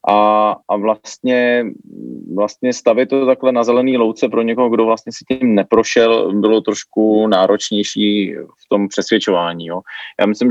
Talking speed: 150 wpm